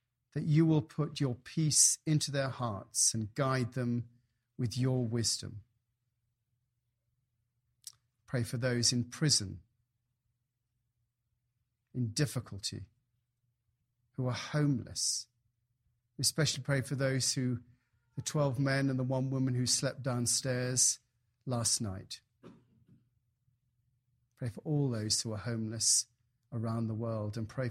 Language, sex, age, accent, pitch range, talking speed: English, male, 40-59, British, 120-130 Hz, 120 wpm